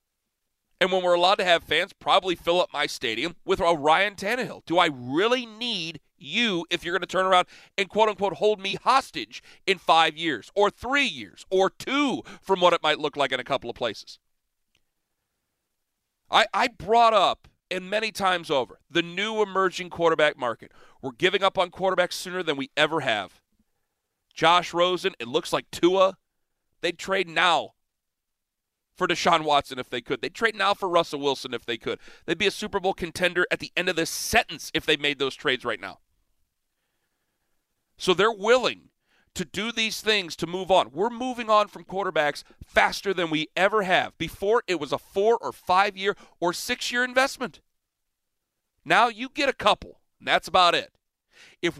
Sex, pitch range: male, 160-210 Hz